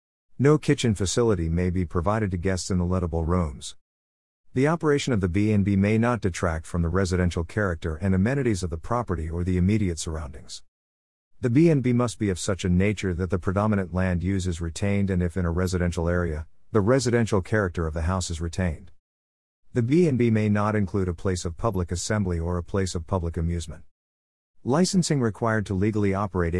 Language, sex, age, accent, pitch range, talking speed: English, male, 50-69, American, 85-110 Hz, 185 wpm